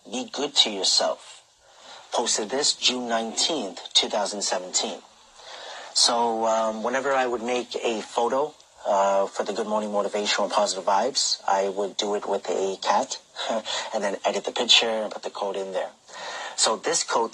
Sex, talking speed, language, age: male, 165 wpm, English, 30-49